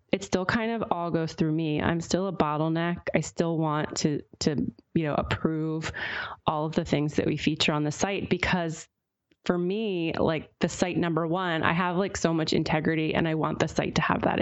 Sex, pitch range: female, 155-180 Hz